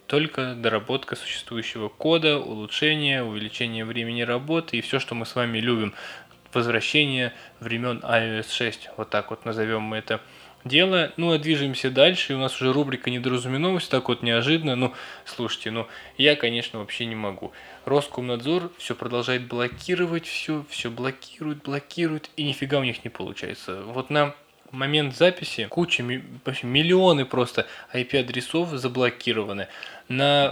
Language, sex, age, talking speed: Russian, male, 20-39, 140 wpm